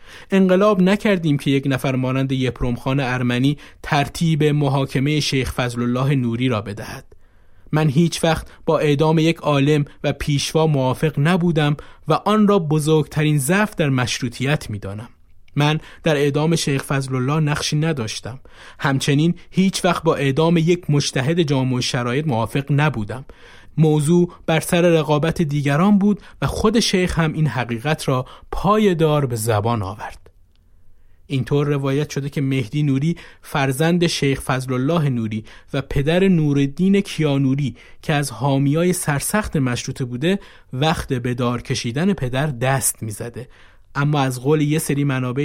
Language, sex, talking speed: Persian, male, 135 wpm